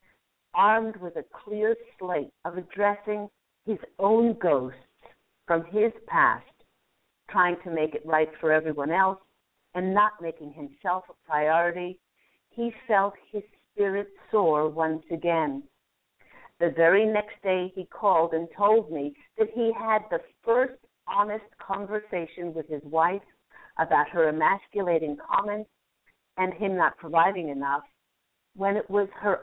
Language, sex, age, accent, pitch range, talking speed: English, female, 50-69, American, 160-210 Hz, 135 wpm